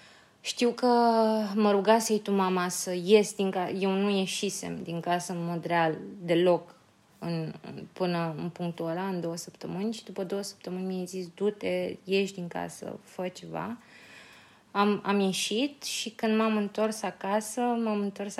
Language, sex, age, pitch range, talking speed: Romanian, female, 20-39, 180-210 Hz, 170 wpm